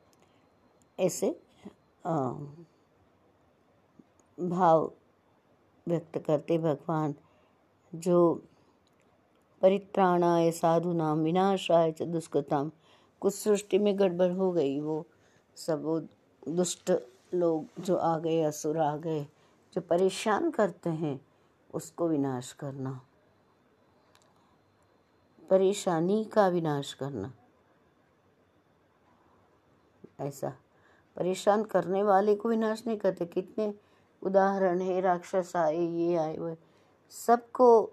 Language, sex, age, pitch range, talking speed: Hindi, female, 60-79, 150-185 Hz, 90 wpm